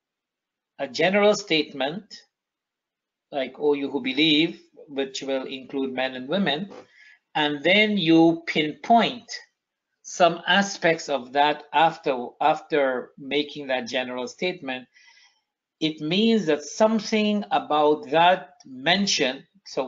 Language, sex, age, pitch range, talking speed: English, male, 50-69, 135-175 Hz, 110 wpm